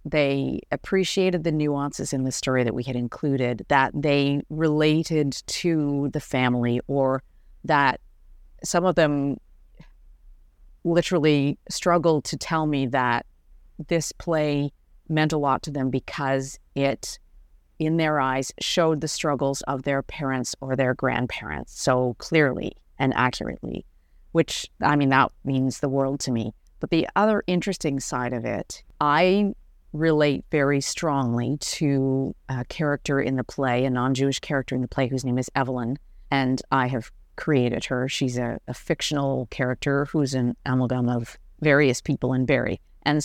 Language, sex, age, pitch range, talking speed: English, female, 40-59, 125-150 Hz, 150 wpm